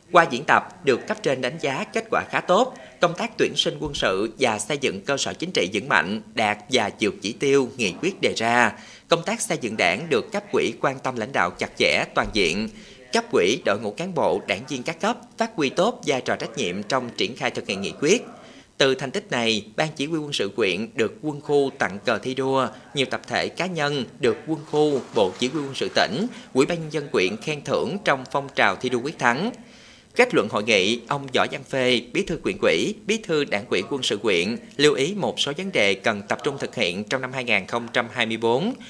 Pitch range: 125-190 Hz